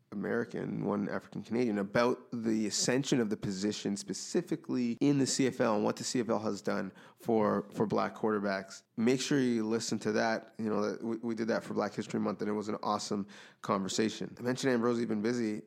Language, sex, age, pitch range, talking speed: English, male, 20-39, 105-125 Hz, 200 wpm